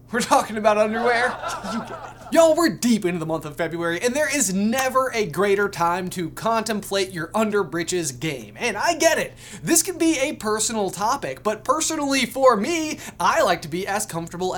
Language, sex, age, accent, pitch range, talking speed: English, male, 20-39, American, 170-255 Hz, 195 wpm